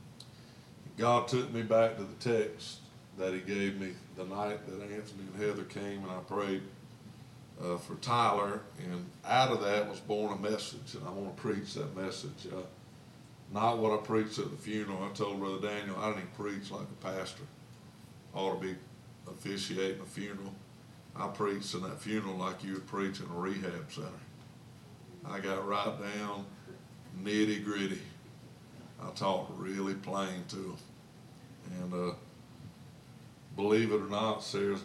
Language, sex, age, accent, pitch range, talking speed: English, male, 60-79, American, 95-110 Hz, 165 wpm